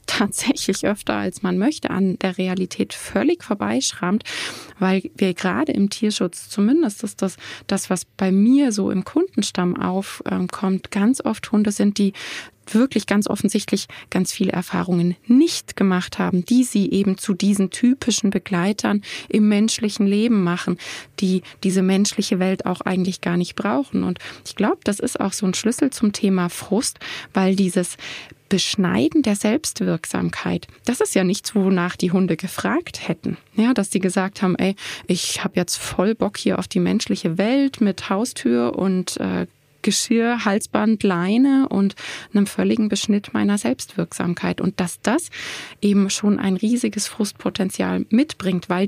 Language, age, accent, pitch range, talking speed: German, 20-39, German, 185-215 Hz, 155 wpm